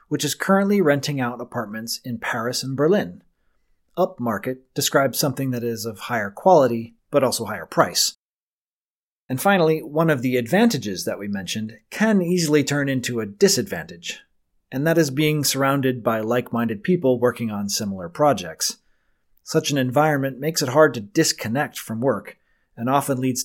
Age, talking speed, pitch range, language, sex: 30-49, 160 wpm, 120-165 Hz, English, male